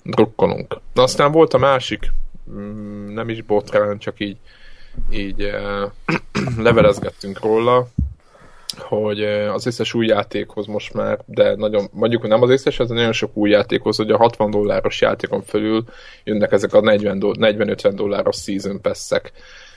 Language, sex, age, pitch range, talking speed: Hungarian, male, 20-39, 105-125 Hz, 135 wpm